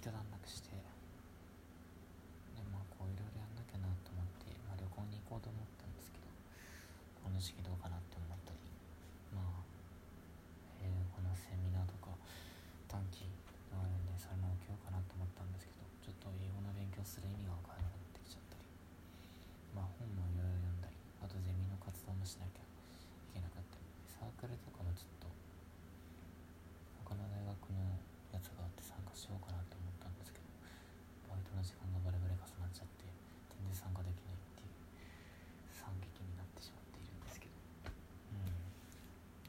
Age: 20-39